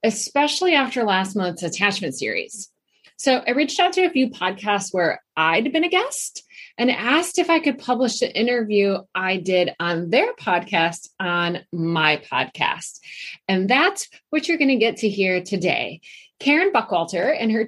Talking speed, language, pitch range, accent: 165 wpm, English, 190-275 Hz, American